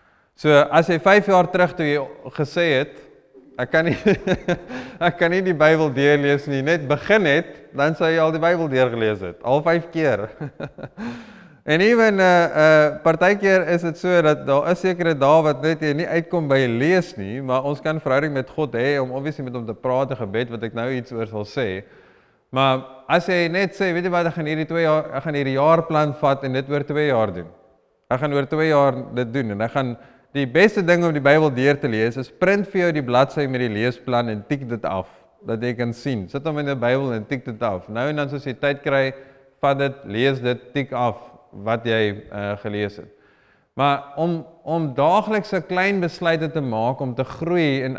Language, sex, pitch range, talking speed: English, male, 125-165 Hz, 220 wpm